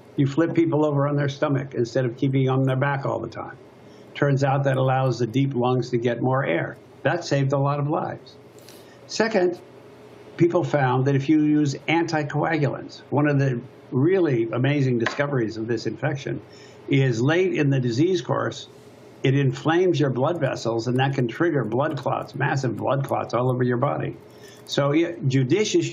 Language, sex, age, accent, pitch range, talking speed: English, male, 60-79, American, 130-145 Hz, 175 wpm